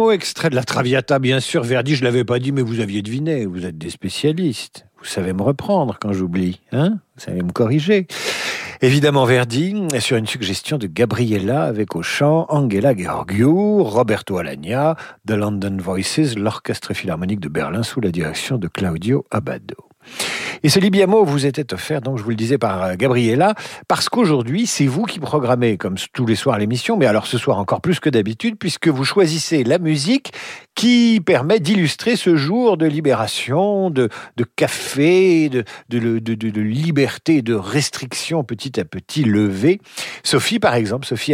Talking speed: 175 wpm